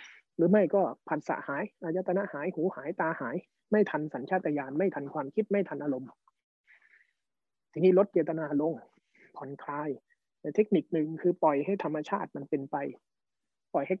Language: Thai